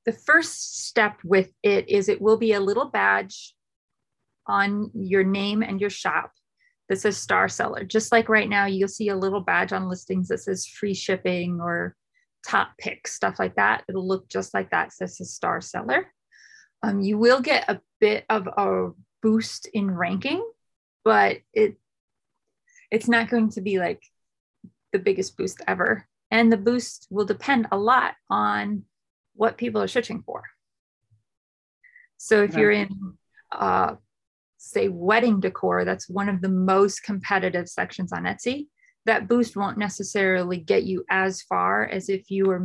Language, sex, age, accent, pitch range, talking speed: English, female, 30-49, American, 185-230 Hz, 165 wpm